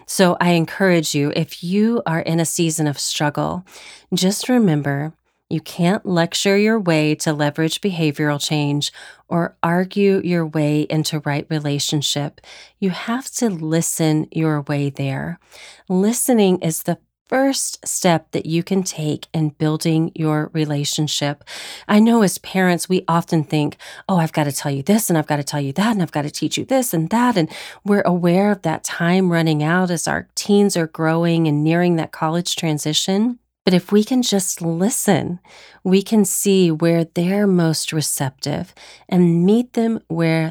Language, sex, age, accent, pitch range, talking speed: English, female, 40-59, American, 155-190 Hz, 170 wpm